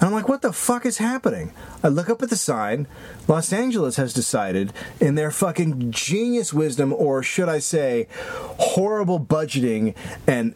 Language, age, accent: English, 30-49, American